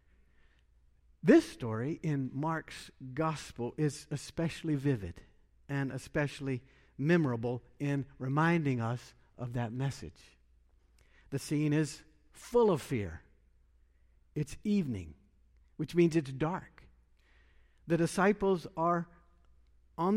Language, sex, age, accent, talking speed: English, male, 60-79, American, 100 wpm